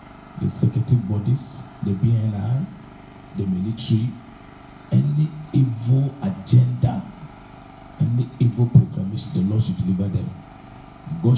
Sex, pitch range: male, 100-135 Hz